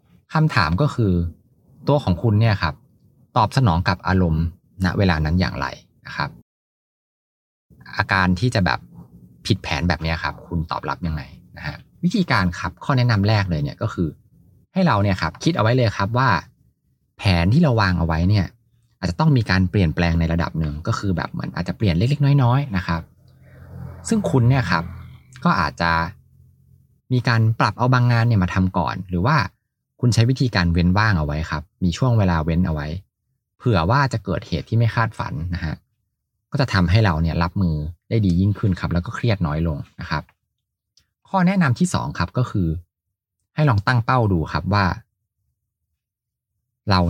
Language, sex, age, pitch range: Thai, male, 20-39, 85-120 Hz